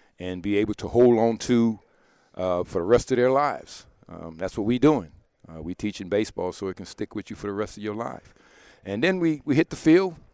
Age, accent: 50-69, American